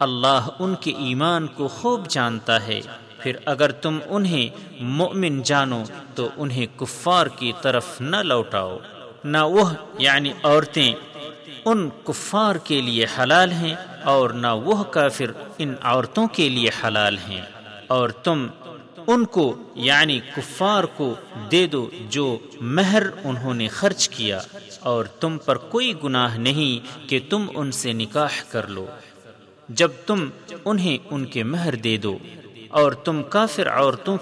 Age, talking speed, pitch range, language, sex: 50-69, 140 wpm, 120-165 Hz, Urdu, male